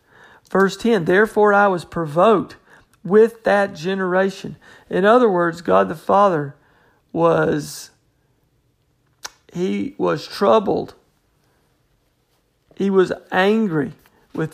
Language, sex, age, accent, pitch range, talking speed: English, male, 50-69, American, 160-215 Hz, 95 wpm